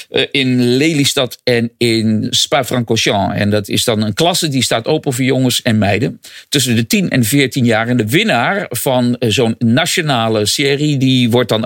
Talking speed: 175 wpm